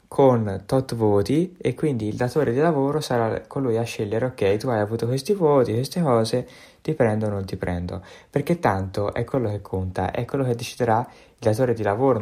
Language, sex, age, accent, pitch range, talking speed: Italian, male, 20-39, native, 100-120 Hz, 200 wpm